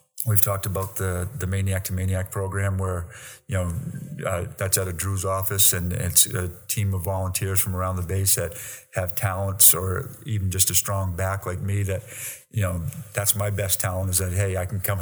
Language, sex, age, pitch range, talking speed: English, male, 50-69, 90-105 Hz, 210 wpm